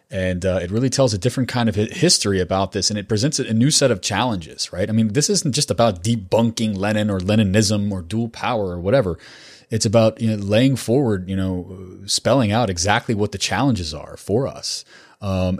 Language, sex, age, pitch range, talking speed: English, male, 30-49, 95-115 Hz, 200 wpm